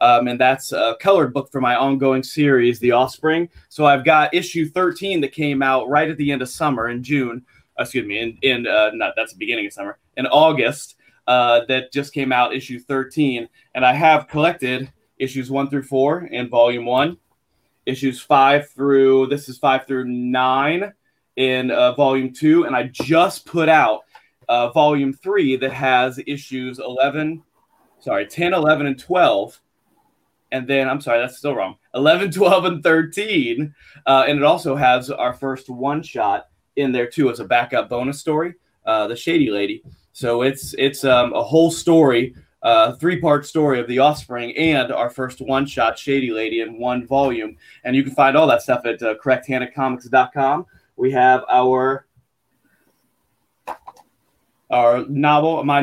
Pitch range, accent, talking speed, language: 125-155 Hz, American, 165 wpm, English